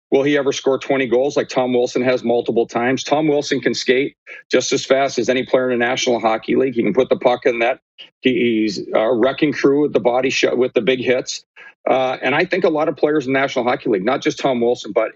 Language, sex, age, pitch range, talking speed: English, male, 40-59, 120-140 Hz, 250 wpm